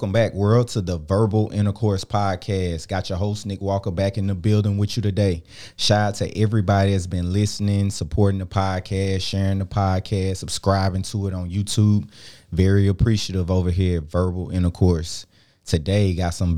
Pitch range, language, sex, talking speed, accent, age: 95-105 Hz, English, male, 175 wpm, American, 20-39